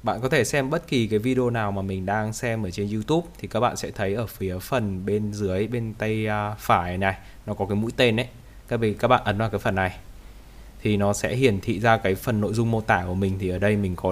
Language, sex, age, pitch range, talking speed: Vietnamese, male, 20-39, 100-115 Hz, 270 wpm